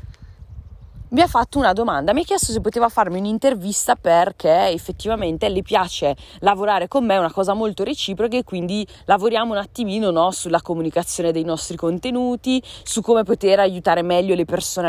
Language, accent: Italian, native